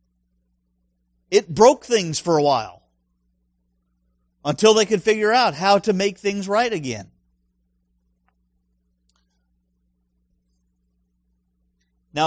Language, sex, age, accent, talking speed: English, male, 50-69, American, 90 wpm